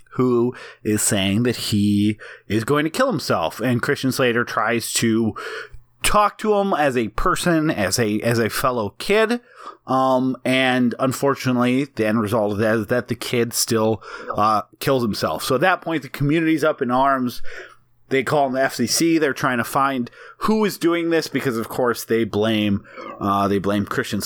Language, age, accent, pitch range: English, 30-49, American, 115-150 Hz